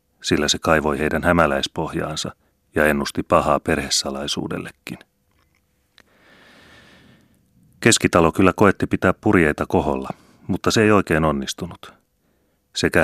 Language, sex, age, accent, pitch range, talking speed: Finnish, male, 30-49, native, 75-90 Hz, 95 wpm